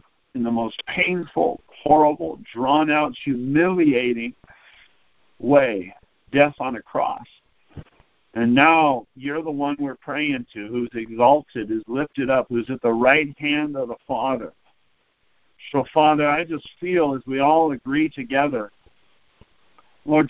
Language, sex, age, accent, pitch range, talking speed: English, male, 50-69, American, 135-170 Hz, 130 wpm